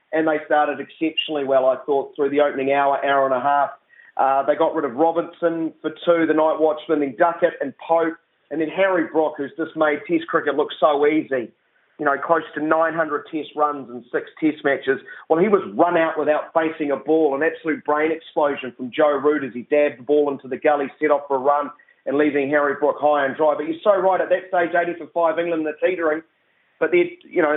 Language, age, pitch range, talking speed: English, 30-49, 150-175 Hz, 235 wpm